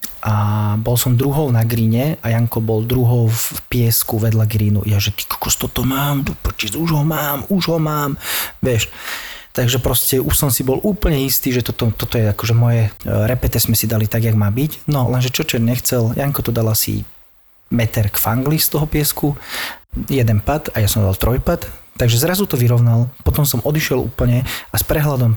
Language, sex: Slovak, male